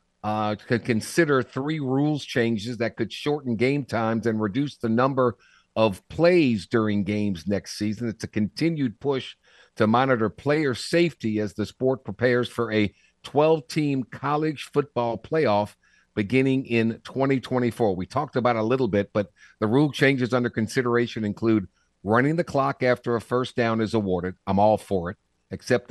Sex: male